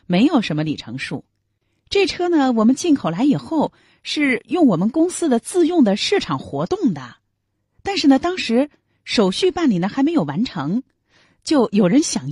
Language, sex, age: Chinese, female, 30-49